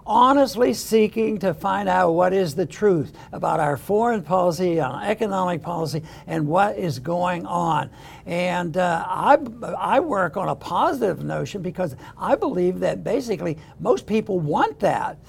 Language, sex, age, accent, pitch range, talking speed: English, male, 60-79, American, 175-220 Hz, 155 wpm